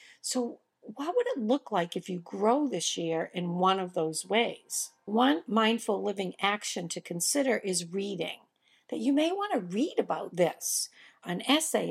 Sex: female